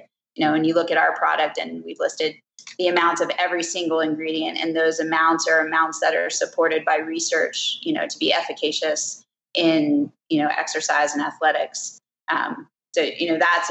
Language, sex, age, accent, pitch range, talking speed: English, female, 20-39, American, 165-190 Hz, 190 wpm